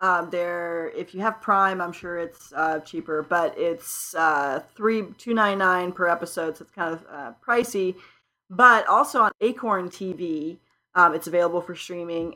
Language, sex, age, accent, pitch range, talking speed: English, female, 30-49, American, 170-205 Hz, 170 wpm